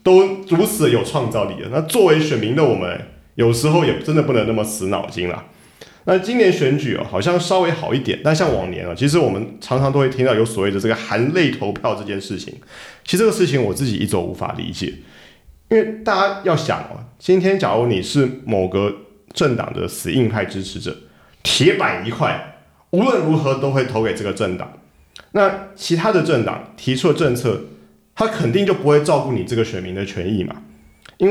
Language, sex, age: Chinese, male, 30-49